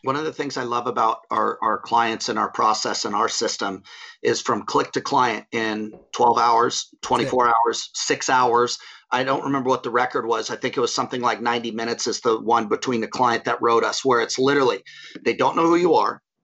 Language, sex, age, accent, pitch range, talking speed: English, male, 40-59, American, 130-195 Hz, 225 wpm